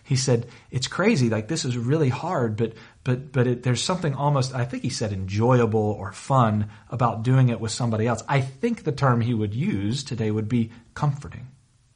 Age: 40-59